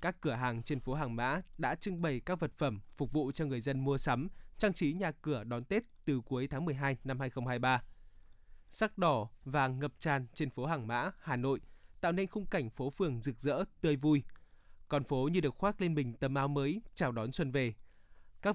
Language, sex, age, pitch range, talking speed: Vietnamese, male, 20-39, 125-160 Hz, 220 wpm